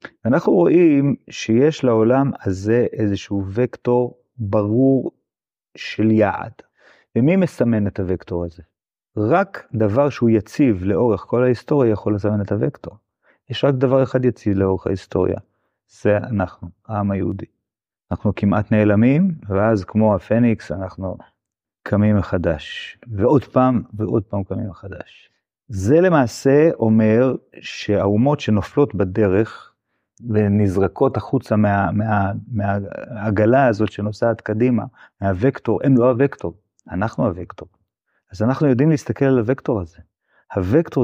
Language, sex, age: Hebrew, male, 30-49